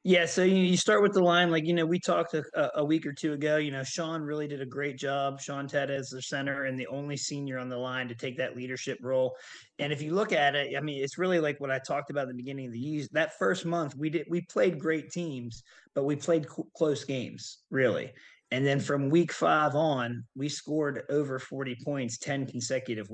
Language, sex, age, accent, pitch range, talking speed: English, male, 30-49, American, 125-150 Hz, 240 wpm